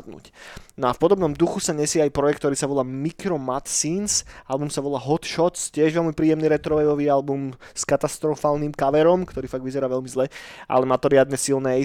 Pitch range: 130-160 Hz